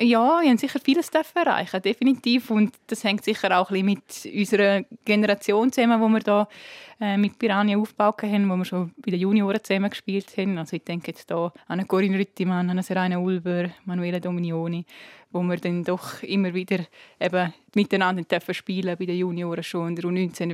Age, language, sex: 20-39, German, female